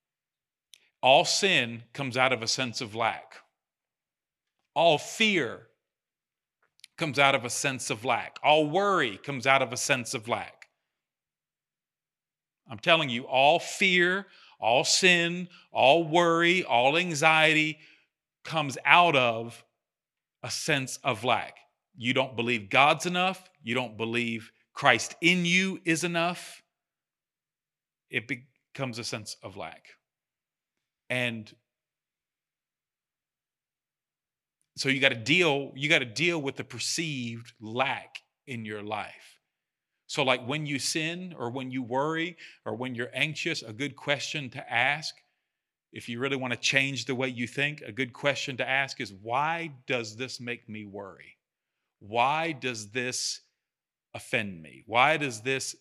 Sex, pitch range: male, 120-155 Hz